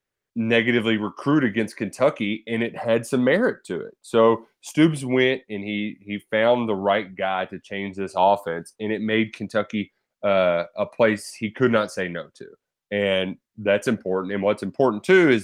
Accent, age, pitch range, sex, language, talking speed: American, 20-39, 100-120 Hz, male, English, 180 wpm